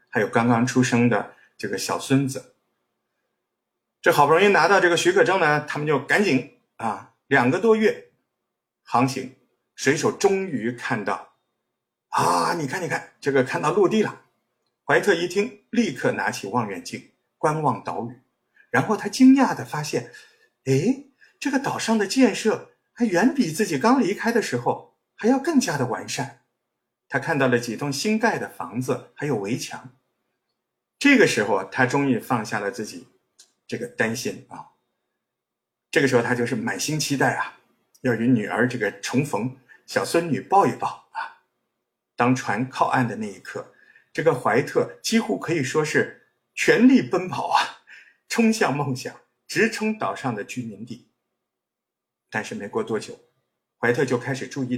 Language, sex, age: Chinese, male, 50-69